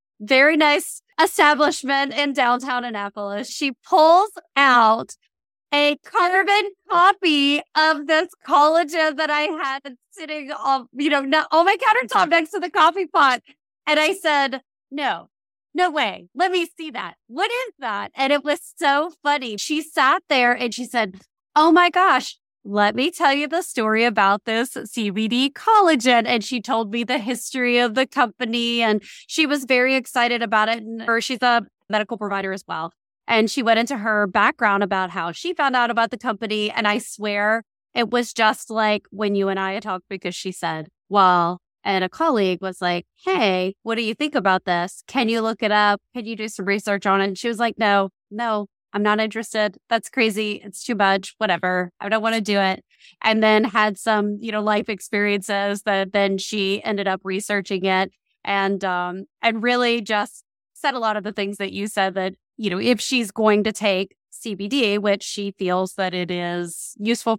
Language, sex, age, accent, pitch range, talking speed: English, female, 20-39, American, 200-280 Hz, 185 wpm